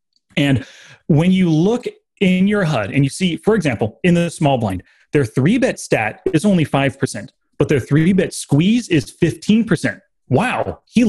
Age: 30-49